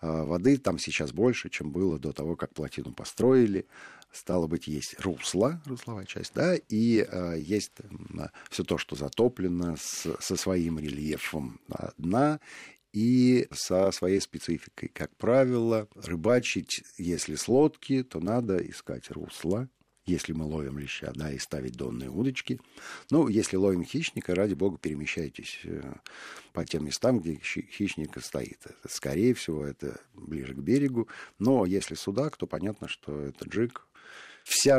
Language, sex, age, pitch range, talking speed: Russian, male, 50-69, 80-120 Hz, 140 wpm